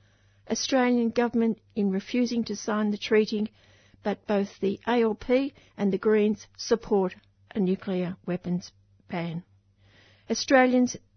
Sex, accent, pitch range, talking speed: female, Australian, 170-220 Hz, 115 wpm